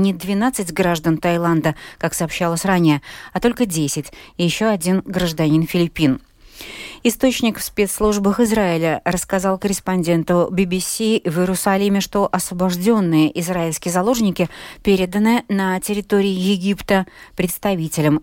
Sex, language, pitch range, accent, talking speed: female, Russian, 170-210 Hz, native, 110 wpm